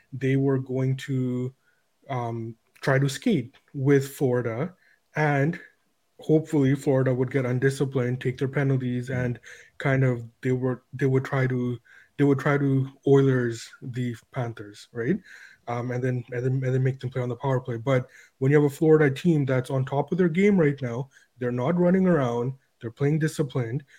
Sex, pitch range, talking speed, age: male, 125-140 Hz, 180 wpm, 20-39